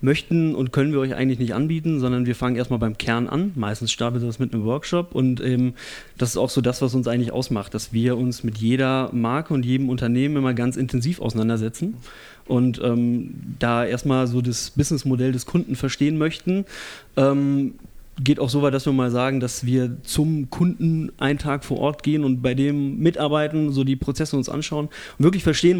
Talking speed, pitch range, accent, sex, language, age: 200 wpm, 120-145 Hz, German, male, German, 30-49